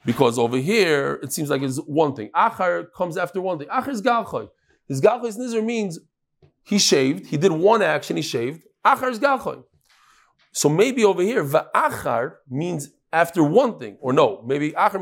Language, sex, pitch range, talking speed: English, male, 145-220 Hz, 190 wpm